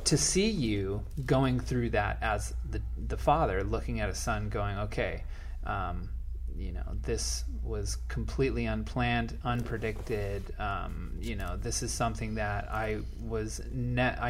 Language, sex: English, male